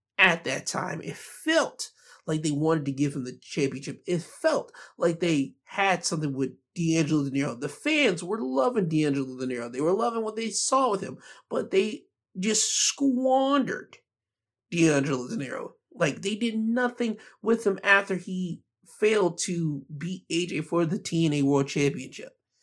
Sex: male